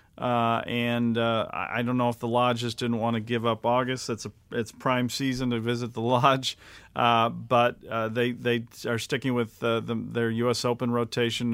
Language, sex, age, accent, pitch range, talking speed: English, male, 40-59, American, 115-135 Hz, 205 wpm